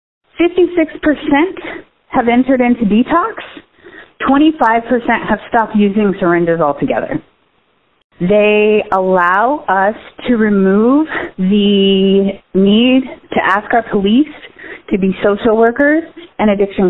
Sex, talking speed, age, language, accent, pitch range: female, 100 wpm, 30-49, English, American, 205-270 Hz